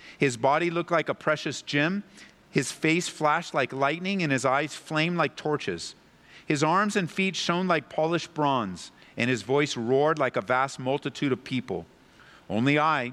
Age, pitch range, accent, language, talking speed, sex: 50-69, 120-155 Hz, American, English, 175 wpm, male